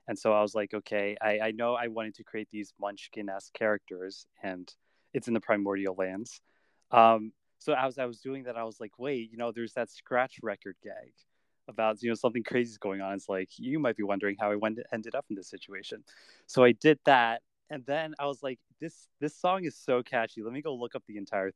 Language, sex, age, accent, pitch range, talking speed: English, male, 20-39, American, 100-120 Hz, 230 wpm